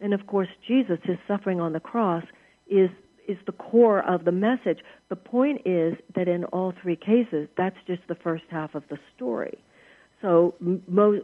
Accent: American